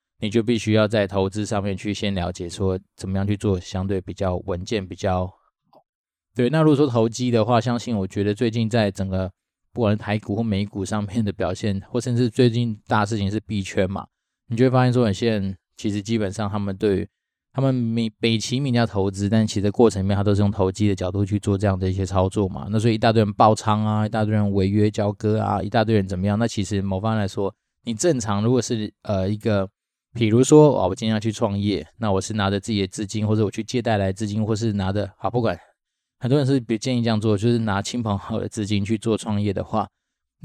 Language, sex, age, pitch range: Chinese, male, 20-39, 100-115 Hz